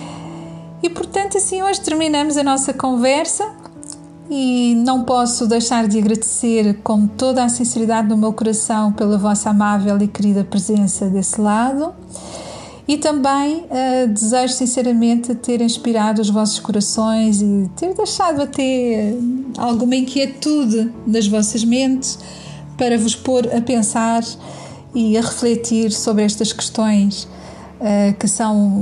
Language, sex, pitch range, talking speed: Portuguese, female, 205-245 Hz, 125 wpm